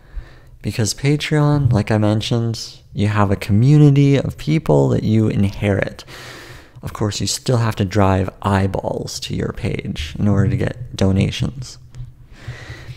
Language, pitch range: English, 100-125 Hz